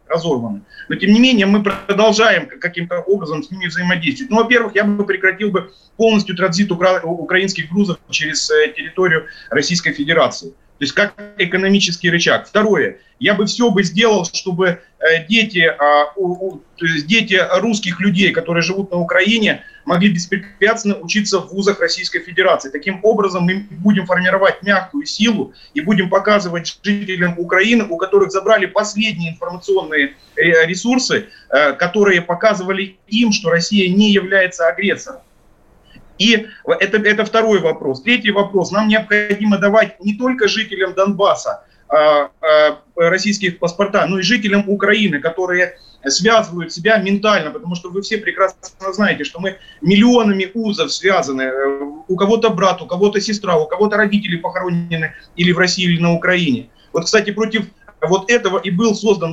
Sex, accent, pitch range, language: male, native, 175-210 Hz, Russian